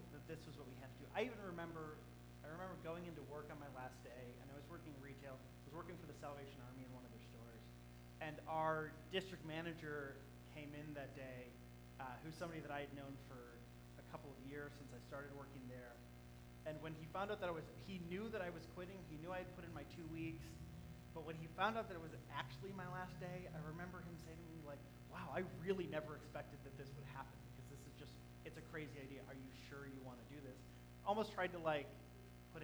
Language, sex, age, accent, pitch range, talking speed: English, male, 30-49, American, 115-155 Hz, 235 wpm